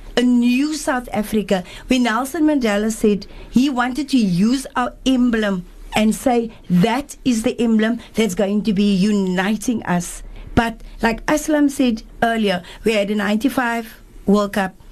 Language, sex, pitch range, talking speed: English, female, 215-275 Hz, 150 wpm